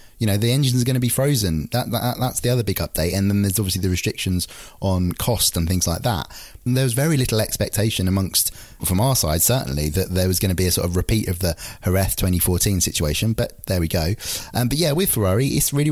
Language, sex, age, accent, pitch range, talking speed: English, male, 30-49, British, 85-115 Hz, 245 wpm